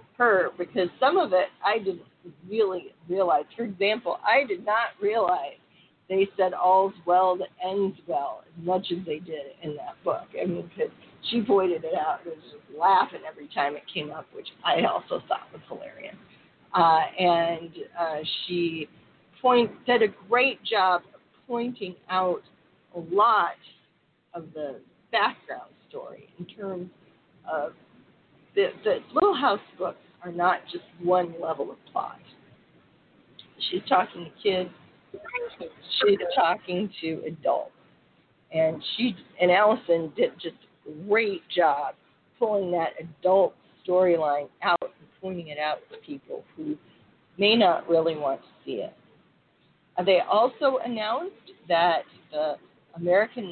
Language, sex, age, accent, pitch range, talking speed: English, female, 40-59, American, 170-230 Hz, 140 wpm